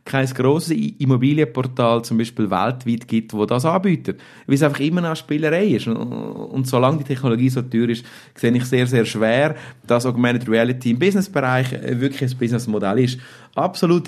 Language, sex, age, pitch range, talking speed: German, male, 30-49, 110-140 Hz, 170 wpm